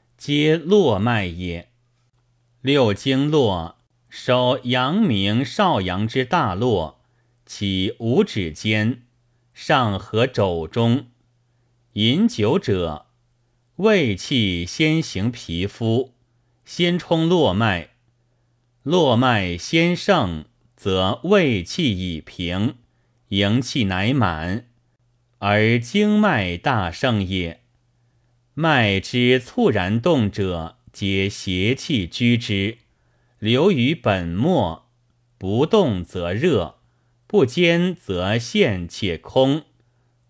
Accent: native